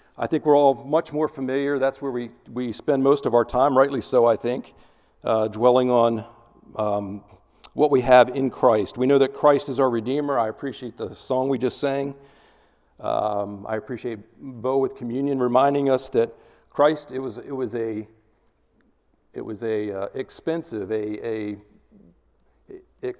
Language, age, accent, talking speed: English, 50-69, American, 170 wpm